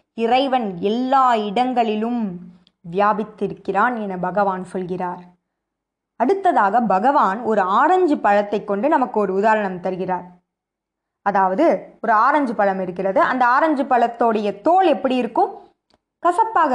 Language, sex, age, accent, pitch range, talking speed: Tamil, female, 20-39, native, 195-260 Hz, 100 wpm